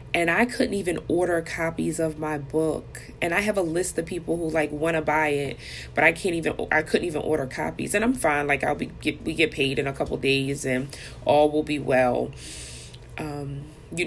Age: 20-39